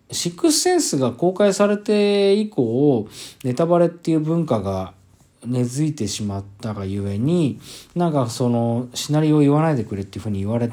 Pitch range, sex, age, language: 105-165 Hz, male, 40-59, Japanese